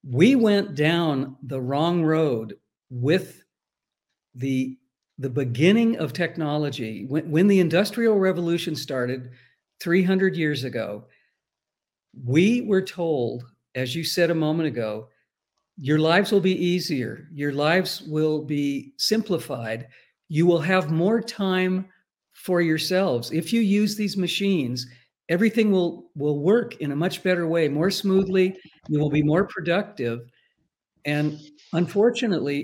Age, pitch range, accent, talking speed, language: 50-69, 140-185 Hz, American, 130 wpm, English